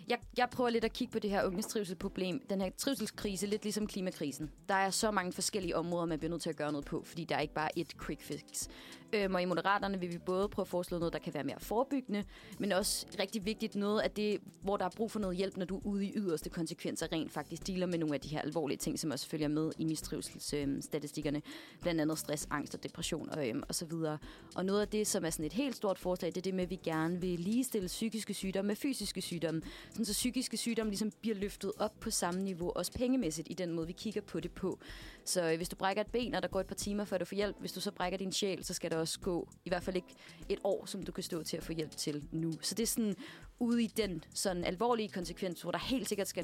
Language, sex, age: Danish, female, 30-49